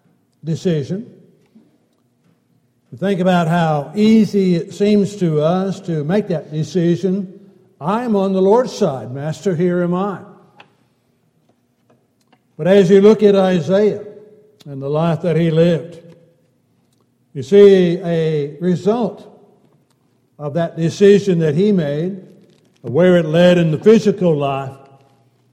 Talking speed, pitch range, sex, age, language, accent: 125 wpm, 145-190 Hz, male, 60-79, English, American